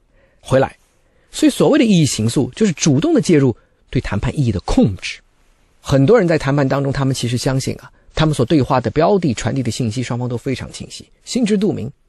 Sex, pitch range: male, 110-145 Hz